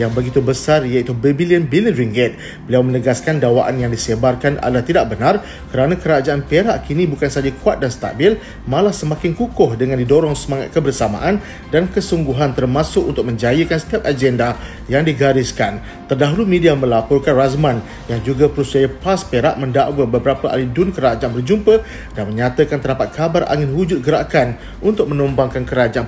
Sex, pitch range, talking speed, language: male, 120-155 Hz, 150 wpm, Malay